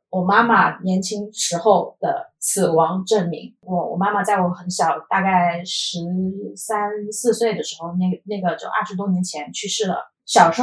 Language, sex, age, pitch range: Chinese, female, 20-39, 180-220 Hz